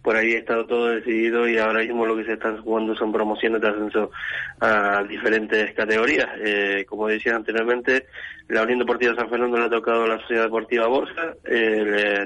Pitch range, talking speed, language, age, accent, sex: 110-125 Hz, 200 wpm, Spanish, 20-39, Argentinian, male